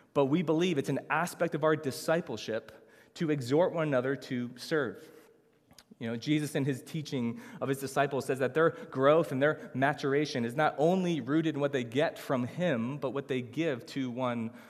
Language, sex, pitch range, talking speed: English, male, 135-160 Hz, 190 wpm